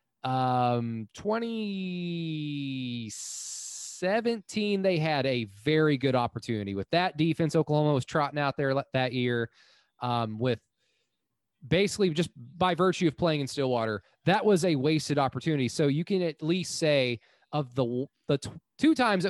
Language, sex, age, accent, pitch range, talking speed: English, male, 20-39, American, 120-165 Hz, 140 wpm